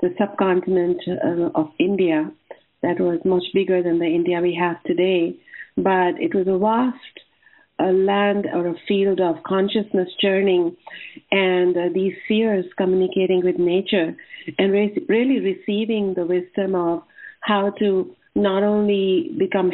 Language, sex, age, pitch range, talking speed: English, female, 50-69, 185-215 Hz, 130 wpm